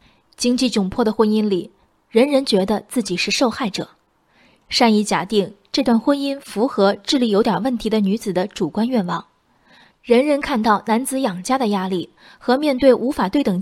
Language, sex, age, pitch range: Chinese, female, 20-39, 200-255 Hz